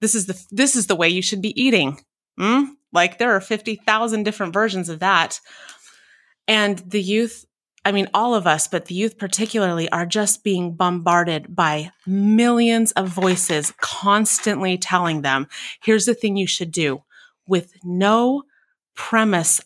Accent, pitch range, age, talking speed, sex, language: American, 175-210 Hz, 30-49, 160 wpm, female, English